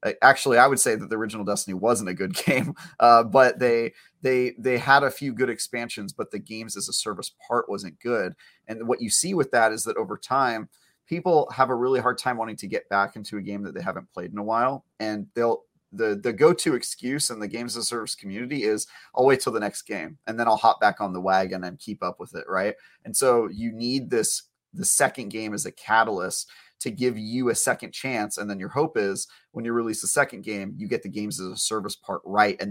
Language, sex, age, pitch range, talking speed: English, male, 30-49, 100-125 Hz, 245 wpm